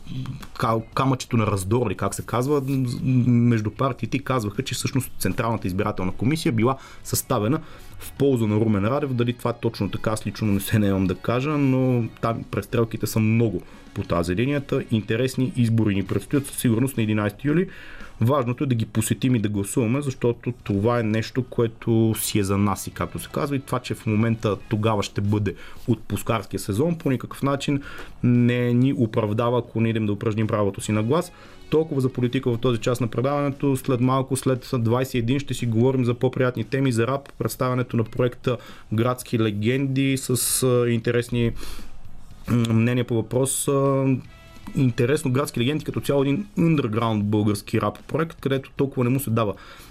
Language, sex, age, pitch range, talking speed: Bulgarian, male, 30-49, 110-130 Hz, 170 wpm